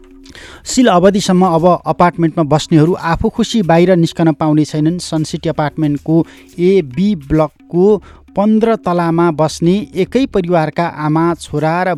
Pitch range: 155-185 Hz